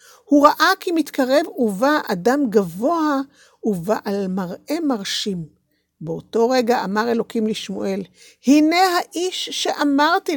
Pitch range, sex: 220-310 Hz, female